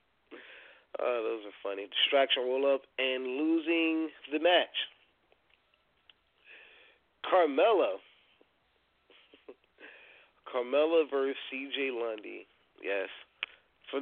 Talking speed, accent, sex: 80 wpm, American, male